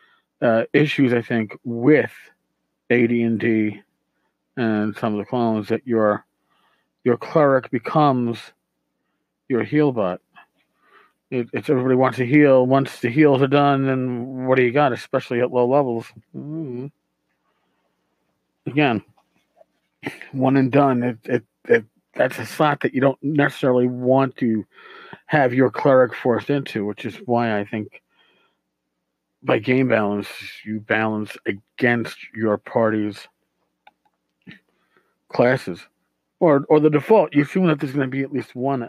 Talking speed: 135 wpm